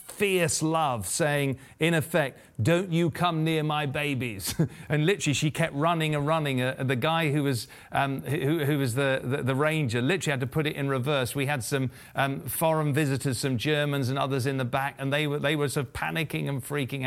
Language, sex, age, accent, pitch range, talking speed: English, male, 40-59, British, 120-150 Hz, 210 wpm